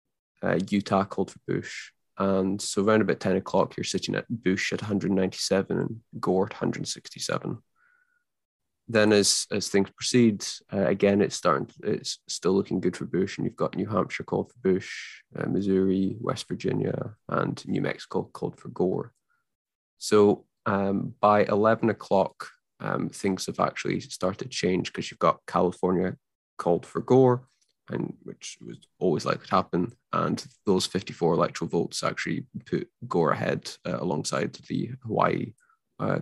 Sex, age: male, 20-39